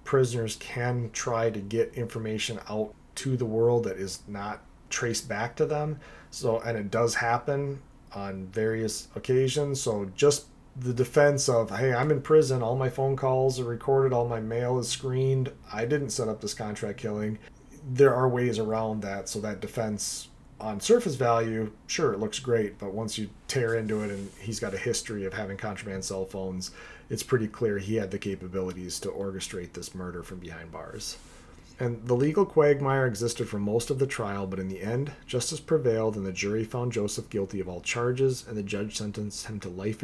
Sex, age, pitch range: male, 30-49, 100-125 Hz